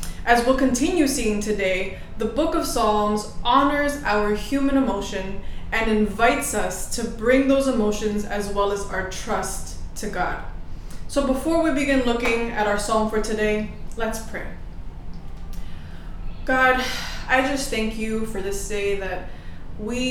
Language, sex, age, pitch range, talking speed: English, female, 20-39, 190-225 Hz, 145 wpm